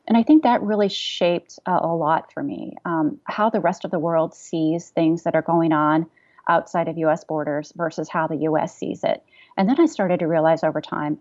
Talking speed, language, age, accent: 220 wpm, English, 30-49, American